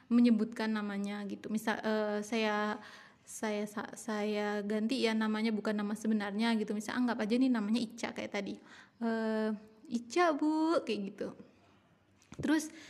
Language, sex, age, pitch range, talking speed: Indonesian, female, 20-39, 220-275 Hz, 135 wpm